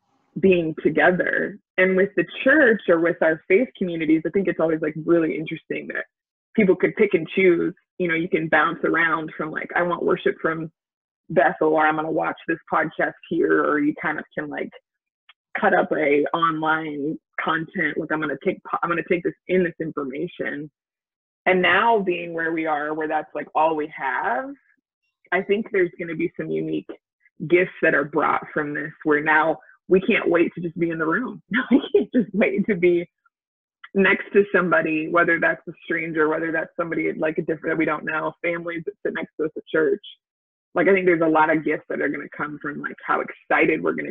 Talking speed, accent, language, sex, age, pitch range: 210 wpm, American, English, female, 20-39, 155-185 Hz